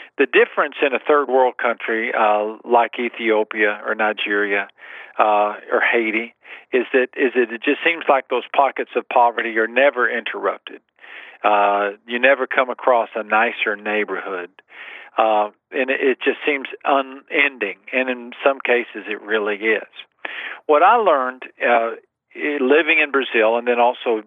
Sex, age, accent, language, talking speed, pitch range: male, 50-69, American, English, 150 wpm, 115-140 Hz